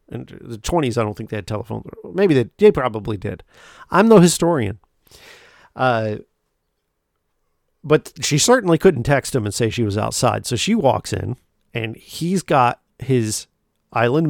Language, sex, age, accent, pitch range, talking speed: English, male, 50-69, American, 110-165 Hz, 160 wpm